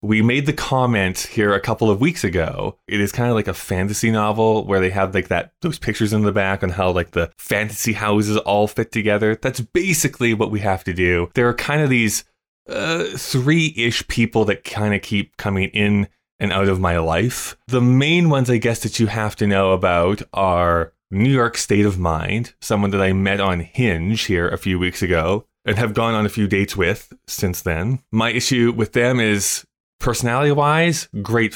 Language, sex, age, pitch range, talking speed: English, male, 20-39, 95-120 Hz, 205 wpm